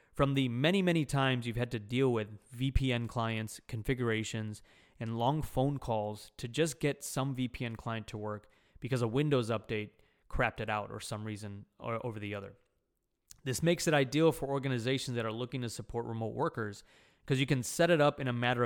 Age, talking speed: 20-39, 195 wpm